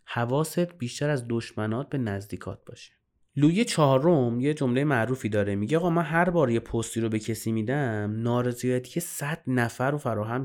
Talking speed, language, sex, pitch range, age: 170 wpm, Persian, male, 110-155 Hz, 30-49